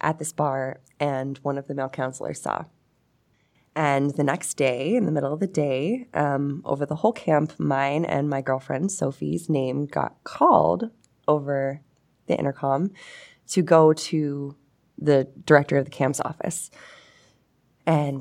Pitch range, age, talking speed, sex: 140-180 Hz, 20-39, 150 wpm, female